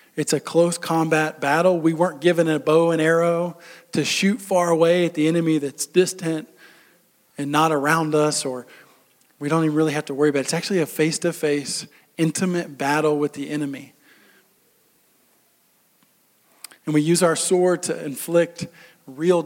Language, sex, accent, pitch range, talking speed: English, male, American, 150-170 Hz, 165 wpm